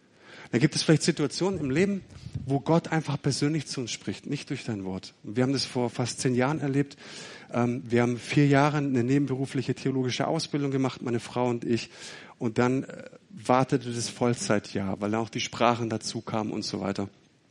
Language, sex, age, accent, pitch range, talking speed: German, male, 40-59, German, 110-135 Hz, 185 wpm